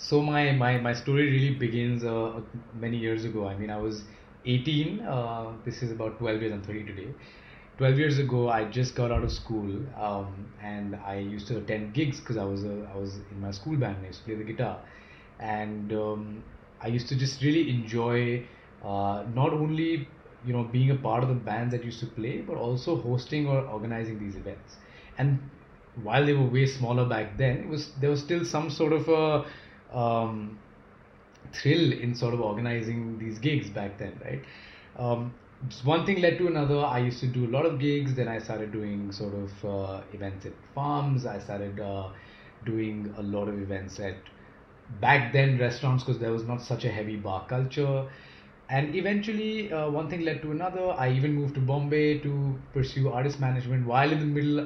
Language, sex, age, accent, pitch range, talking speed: English, male, 20-39, Indian, 105-140 Hz, 200 wpm